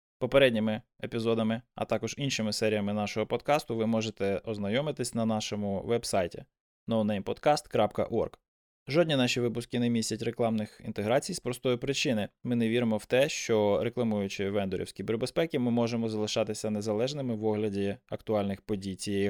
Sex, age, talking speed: male, 20-39, 140 wpm